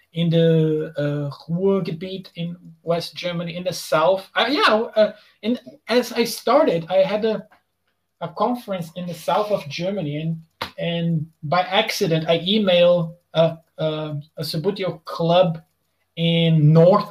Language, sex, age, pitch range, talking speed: English, male, 20-39, 160-210 Hz, 135 wpm